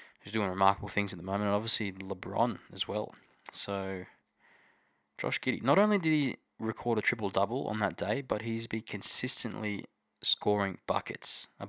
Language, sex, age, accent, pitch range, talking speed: English, male, 20-39, Australian, 100-115 Hz, 165 wpm